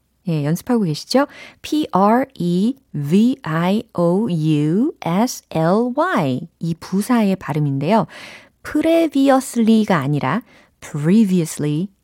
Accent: native